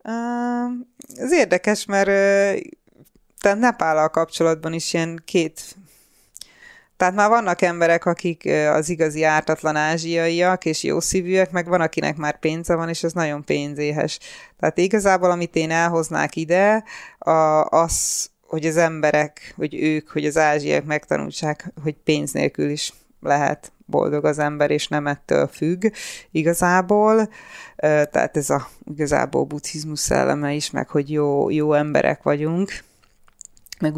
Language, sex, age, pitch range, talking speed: Hungarian, female, 30-49, 150-175 Hz, 130 wpm